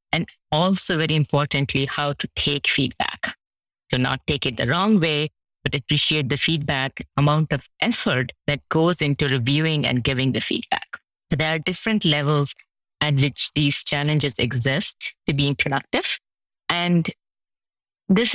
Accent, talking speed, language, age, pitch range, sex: Indian, 145 wpm, English, 20-39, 140-170 Hz, female